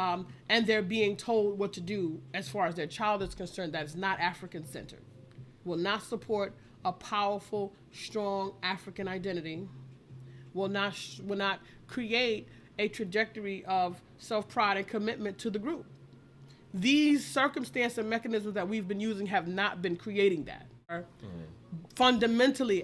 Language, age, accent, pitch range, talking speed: English, 30-49, American, 175-215 Hz, 155 wpm